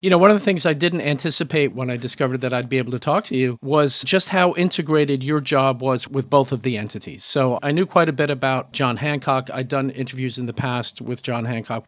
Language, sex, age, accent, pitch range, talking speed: English, male, 40-59, American, 125-150 Hz, 255 wpm